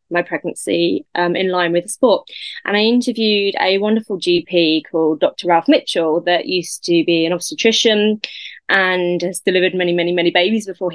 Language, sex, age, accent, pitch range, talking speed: English, female, 20-39, British, 175-260 Hz, 175 wpm